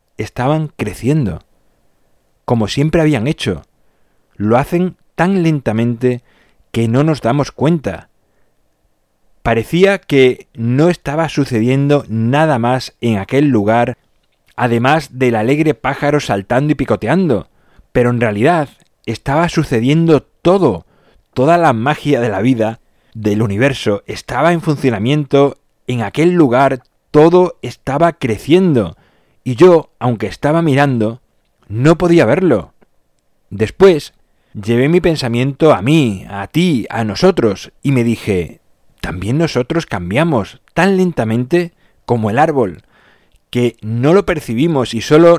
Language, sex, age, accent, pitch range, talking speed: Spanish, male, 30-49, Spanish, 115-155 Hz, 120 wpm